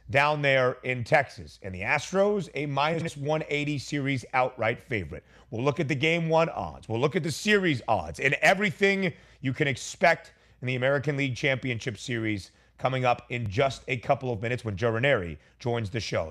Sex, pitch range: male, 120-165 Hz